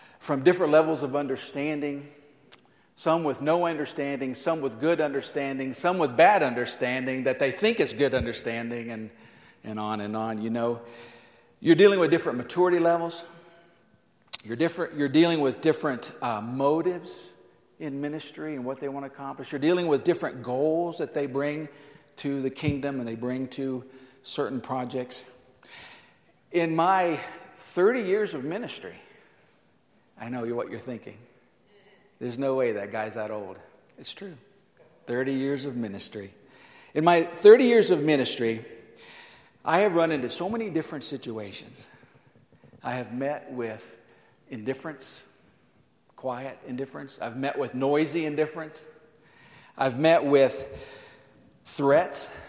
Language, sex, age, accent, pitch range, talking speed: English, male, 50-69, American, 125-160 Hz, 140 wpm